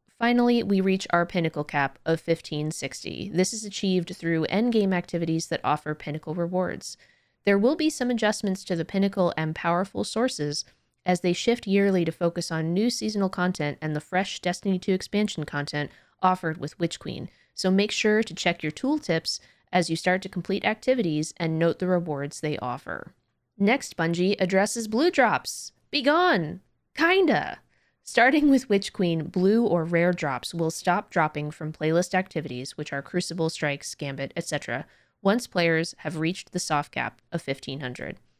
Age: 20-39